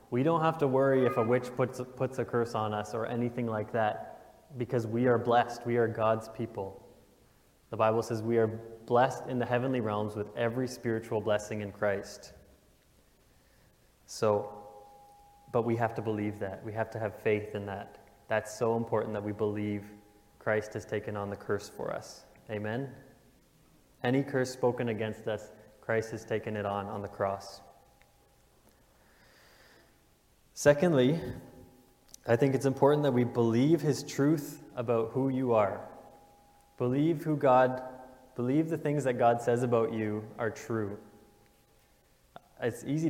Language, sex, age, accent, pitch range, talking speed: English, male, 20-39, American, 105-130 Hz, 155 wpm